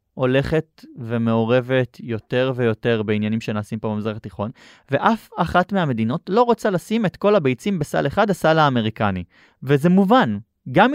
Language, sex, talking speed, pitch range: Hebrew, male, 135 wpm, 120-185 Hz